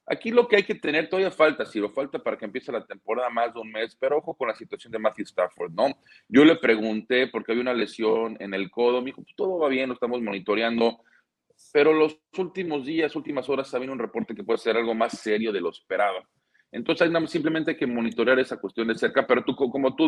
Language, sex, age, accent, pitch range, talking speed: Spanish, male, 40-59, Mexican, 110-140 Hz, 240 wpm